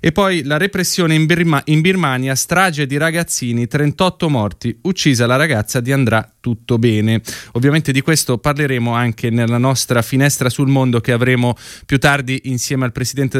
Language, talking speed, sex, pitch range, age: Italian, 160 wpm, male, 120-155 Hz, 20-39